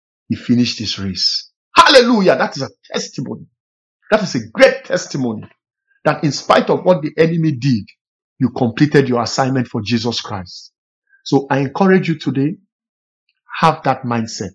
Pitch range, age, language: 115-150 Hz, 50-69, English